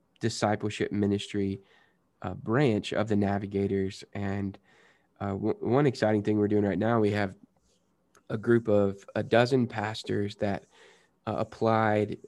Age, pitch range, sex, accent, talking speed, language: 20-39, 100-115 Hz, male, American, 135 wpm, English